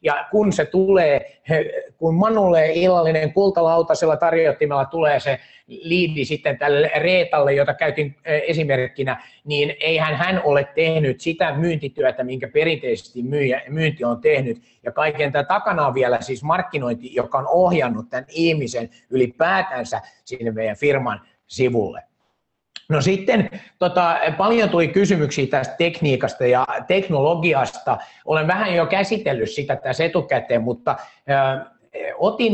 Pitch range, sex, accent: 135-175 Hz, male, native